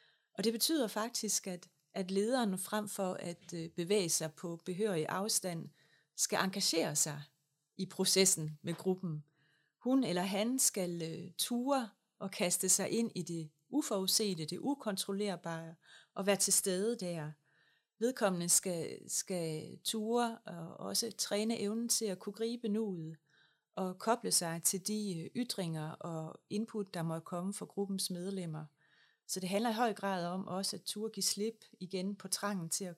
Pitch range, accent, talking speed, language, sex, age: 165-205 Hz, native, 155 wpm, Danish, female, 30-49